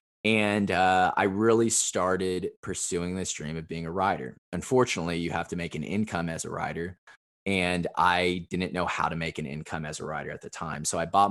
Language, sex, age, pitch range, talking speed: English, male, 20-39, 80-95 Hz, 210 wpm